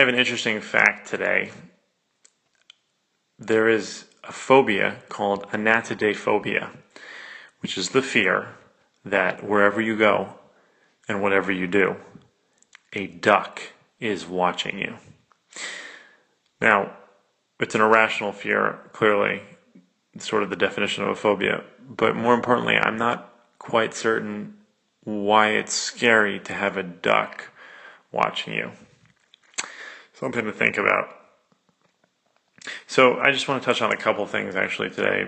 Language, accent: English, American